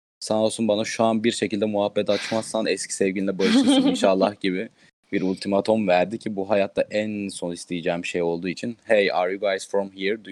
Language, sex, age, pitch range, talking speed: Turkish, male, 30-49, 95-110 Hz, 190 wpm